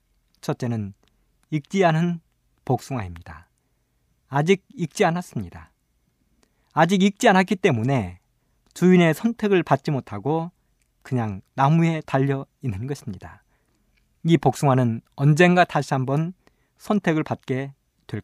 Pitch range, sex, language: 110-175 Hz, male, Korean